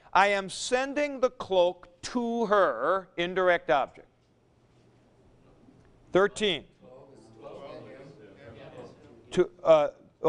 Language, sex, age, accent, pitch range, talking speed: English, male, 50-69, American, 155-220 Hz, 70 wpm